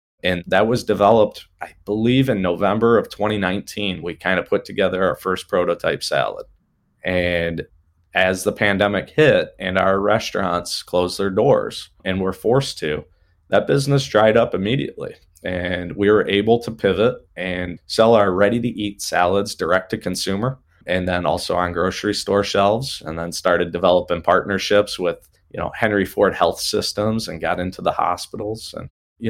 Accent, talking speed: American, 160 wpm